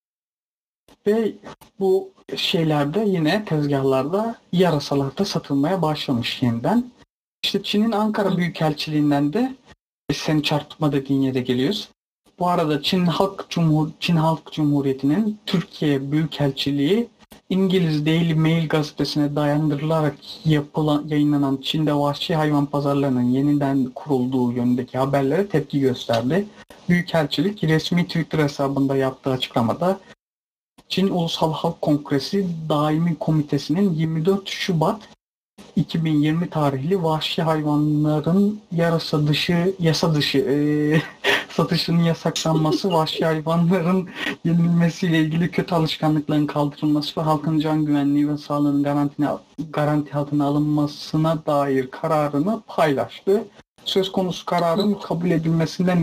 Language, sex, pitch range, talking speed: Turkish, male, 145-175 Hz, 100 wpm